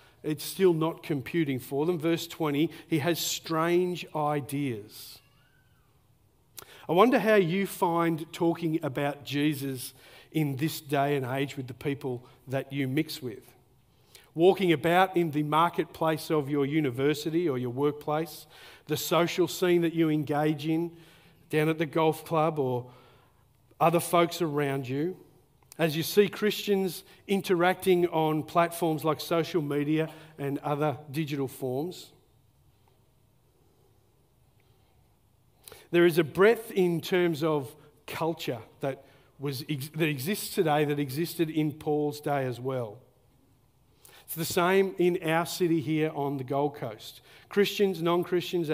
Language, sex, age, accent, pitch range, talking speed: English, male, 50-69, Australian, 135-170 Hz, 130 wpm